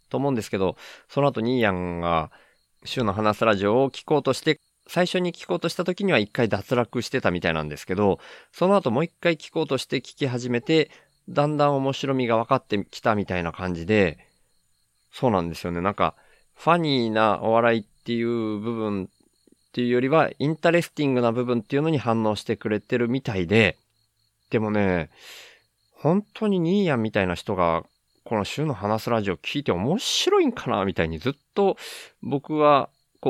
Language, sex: Japanese, male